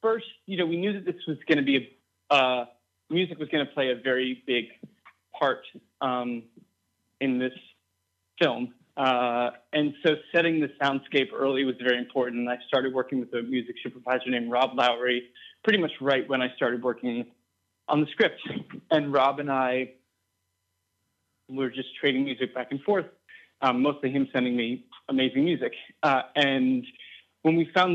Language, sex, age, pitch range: English, male, 30-49, 120-145 Hz